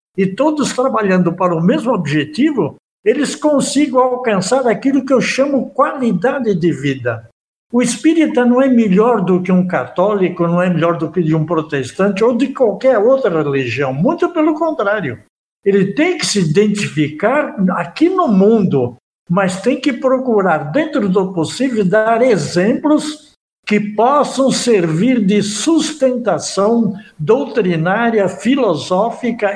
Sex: male